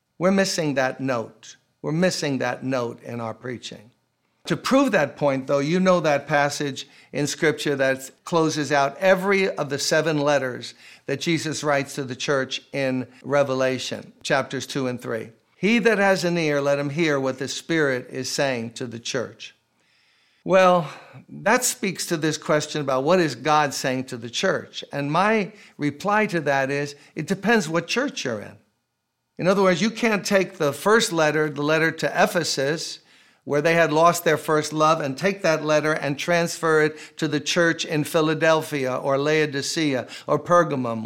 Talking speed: 175 wpm